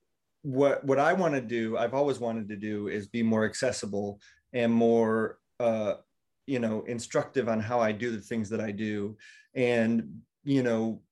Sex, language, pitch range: male, English, 110-130 Hz